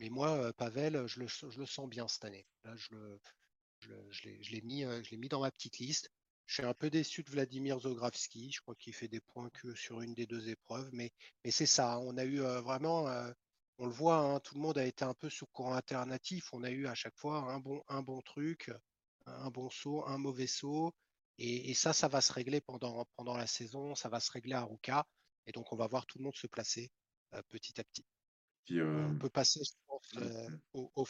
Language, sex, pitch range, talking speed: French, male, 115-135 Hz, 240 wpm